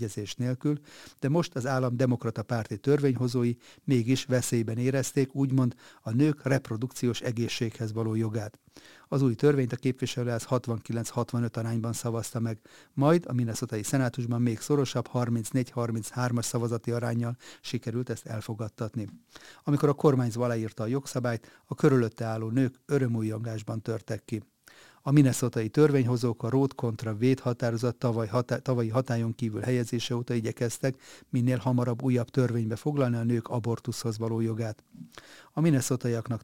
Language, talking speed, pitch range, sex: Hungarian, 130 wpm, 115-130 Hz, male